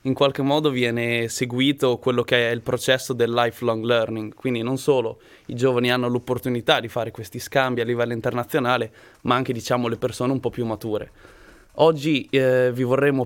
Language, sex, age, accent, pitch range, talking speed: Italian, male, 20-39, native, 120-140 Hz, 180 wpm